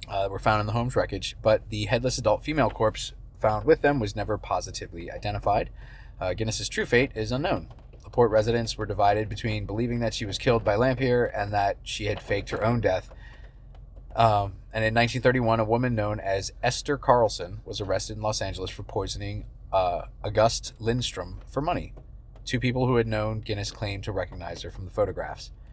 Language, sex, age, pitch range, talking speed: English, male, 30-49, 100-115 Hz, 190 wpm